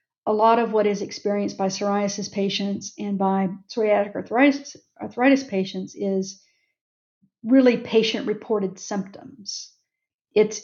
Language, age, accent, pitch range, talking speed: English, 50-69, American, 195-225 Hz, 120 wpm